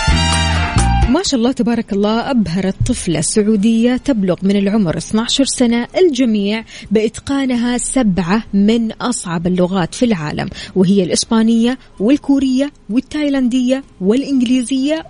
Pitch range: 190-245 Hz